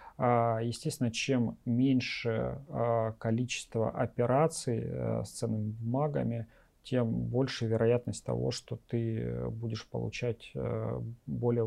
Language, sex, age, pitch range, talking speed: Russian, male, 40-59, 115-130 Hz, 85 wpm